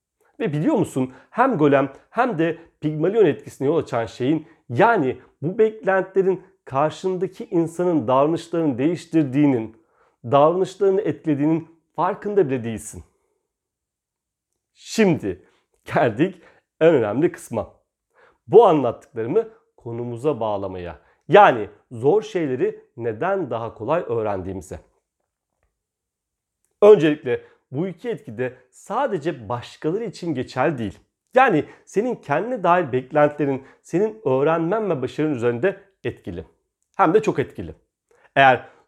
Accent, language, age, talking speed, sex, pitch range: native, Turkish, 40-59, 100 wpm, male, 125-190 Hz